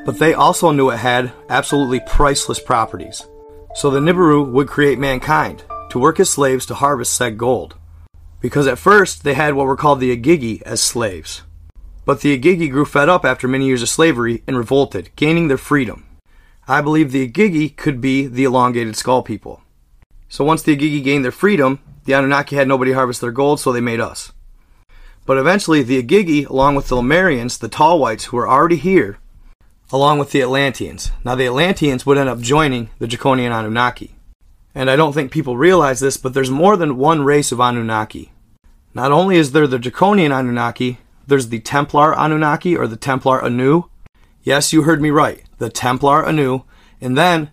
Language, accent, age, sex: English, American, 30-49, male